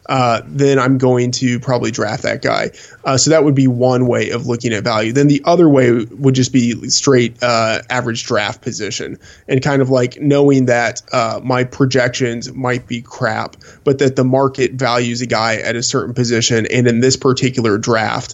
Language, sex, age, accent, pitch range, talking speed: English, male, 20-39, American, 120-135 Hz, 195 wpm